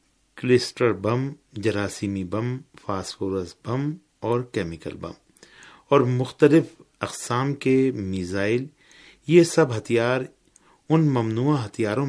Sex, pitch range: male, 95-125 Hz